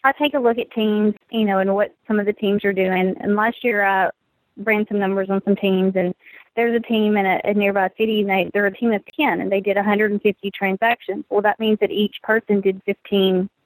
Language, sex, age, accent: English, female, 20-39, American